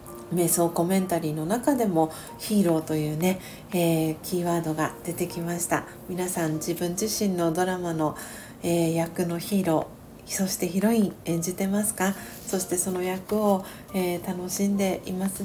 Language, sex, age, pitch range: Japanese, female, 40-59, 170-205 Hz